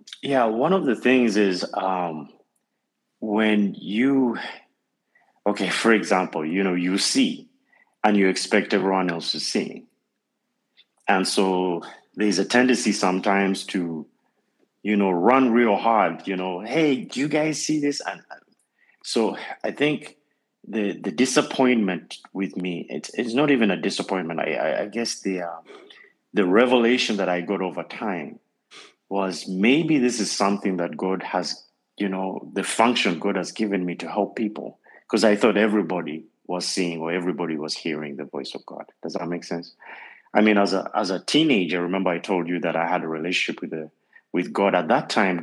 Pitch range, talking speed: 90-110 Hz, 170 wpm